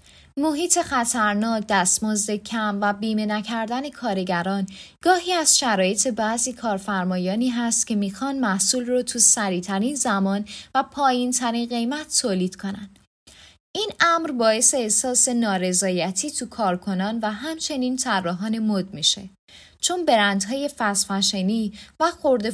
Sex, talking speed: female, 115 wpm